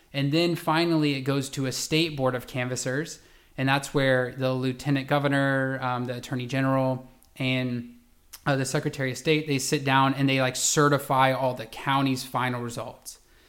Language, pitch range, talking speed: English, 125-145 Hz, 175 wpm